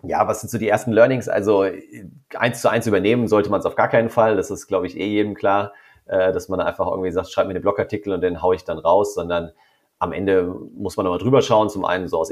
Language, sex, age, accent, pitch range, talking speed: German, male, 30-49, German, 95-115 Hz, 260 wpm